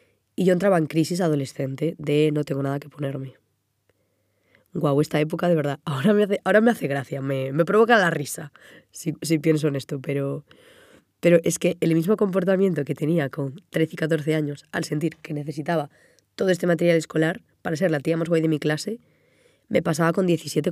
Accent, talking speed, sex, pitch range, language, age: Spanish, 200 wpm, female, 145-170 Hz, Spanish, 20-39